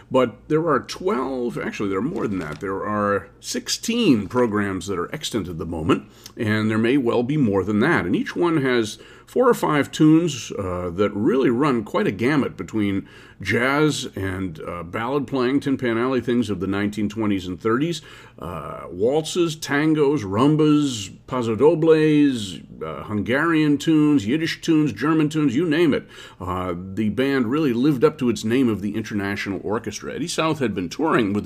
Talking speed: 175 wpm